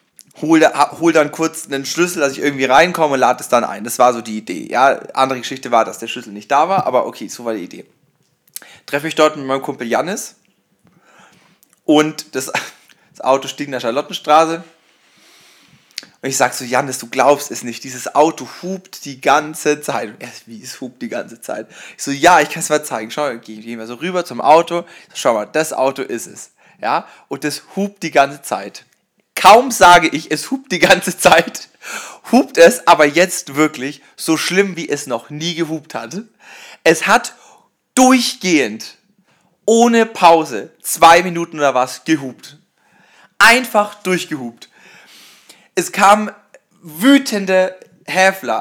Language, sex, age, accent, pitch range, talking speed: German, male, 30-49, German, 140-195 Hz, 175 wpm